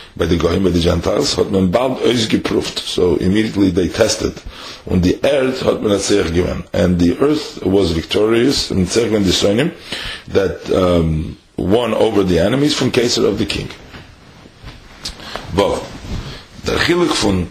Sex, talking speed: male, 145 wpm